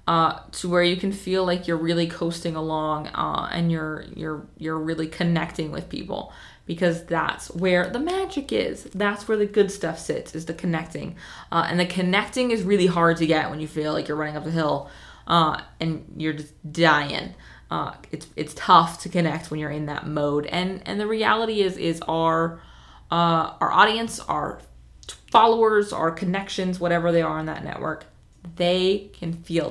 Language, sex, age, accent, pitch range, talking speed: English, female, 20-39, American, 160-195 Hz, 185 wpm